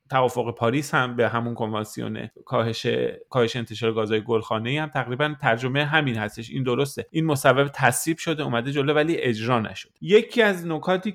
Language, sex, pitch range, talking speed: Persian, male, 120-155 Hz, 155 wpm